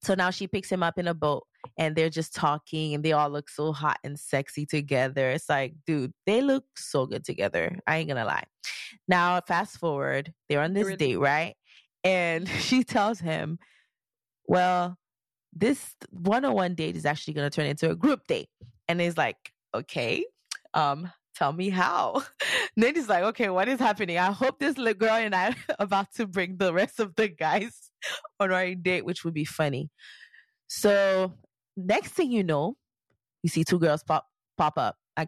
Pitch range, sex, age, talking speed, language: 155-205 Hz, female, 20-39, 190 wpm, English